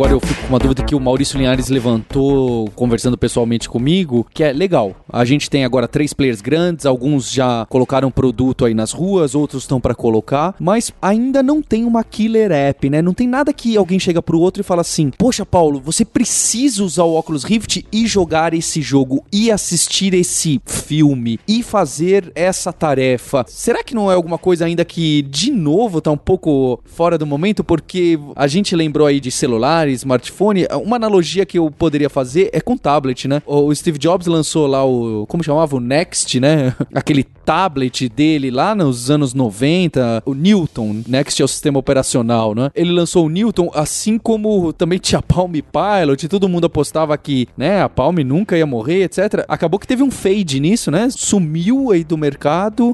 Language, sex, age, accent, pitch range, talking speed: Portuguese, male, 20-39, Brazilian, 135-190 Hz, 190 wpm